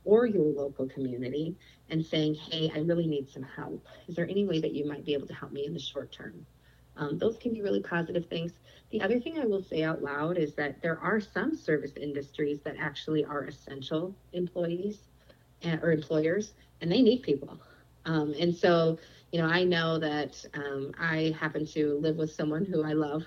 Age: 40-59